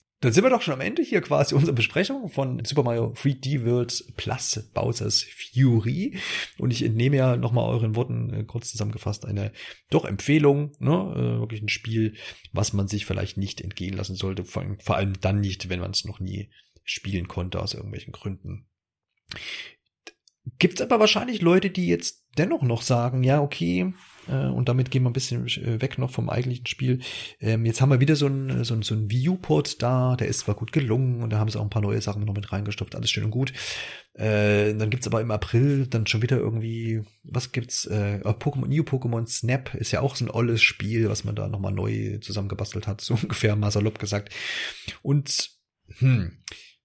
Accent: German